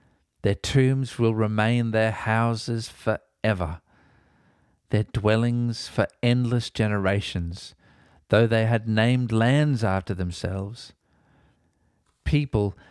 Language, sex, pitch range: English, male, 95-120 Hz